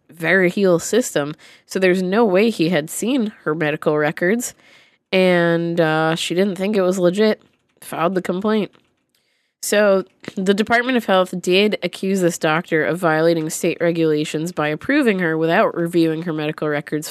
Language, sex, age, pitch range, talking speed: English, female, 20-39, 165-220 Hz, 160 wpm